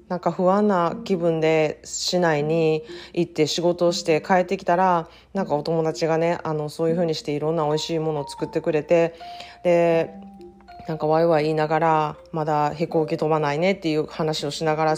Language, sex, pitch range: Japanese, female, 155-195 Hz